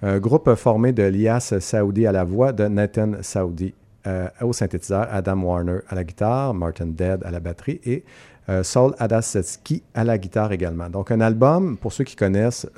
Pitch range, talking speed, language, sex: 95-115 Hz, 190 wpm, French, male